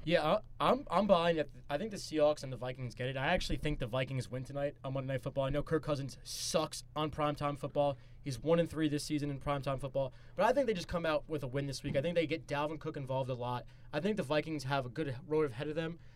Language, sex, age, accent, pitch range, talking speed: English, male, 20-39, American, 130-165 Hz, 270 wpm